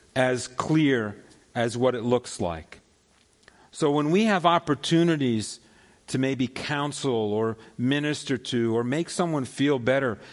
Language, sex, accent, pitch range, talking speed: English, male, American, 120-160 Hz, 135 wpm